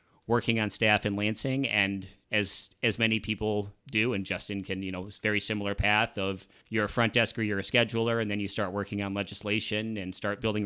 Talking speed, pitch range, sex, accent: 220 wpm, 100-110 Hz, male, American